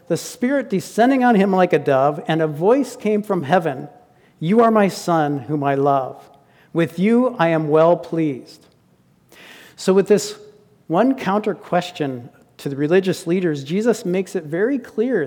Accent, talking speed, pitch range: American, 165 wpm, 155-210 Hz